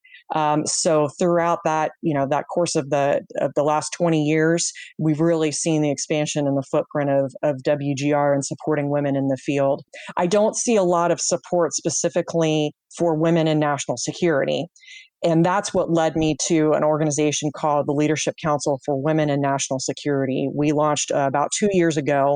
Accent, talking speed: American, 185 wpm